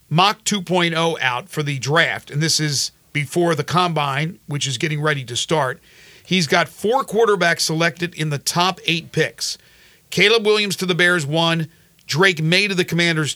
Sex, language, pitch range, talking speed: male, English, 145-175 Hz, 175 wpm